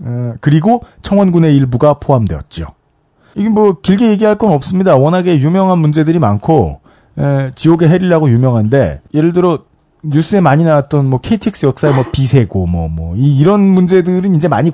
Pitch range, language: 130-190 Hz, Korean